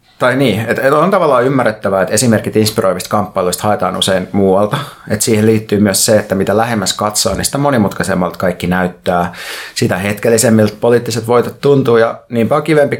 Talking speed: 155 wpm